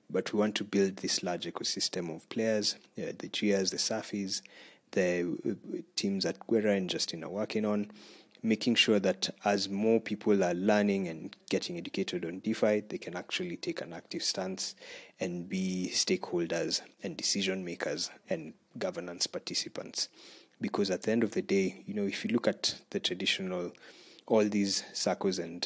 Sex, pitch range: male, 95-115 Hz